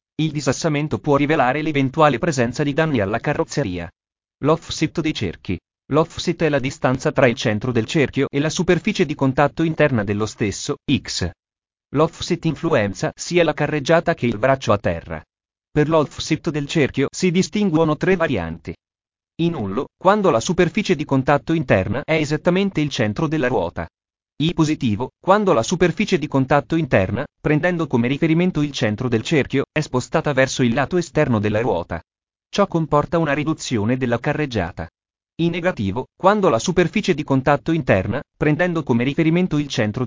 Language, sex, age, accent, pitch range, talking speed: Italian, male, 30-49, native, 120-165 Hz, 155 wpm